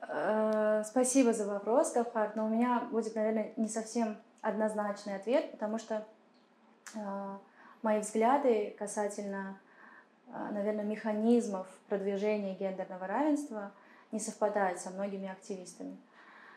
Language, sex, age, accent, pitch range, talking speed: Russian, female, 20-39, native, 200-235 Hz, 100 wpm